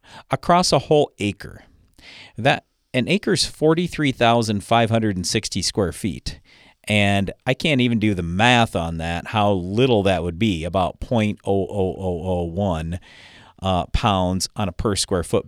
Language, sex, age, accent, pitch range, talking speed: English, male, 40-59, American, 95-130 Hz, 130 wpm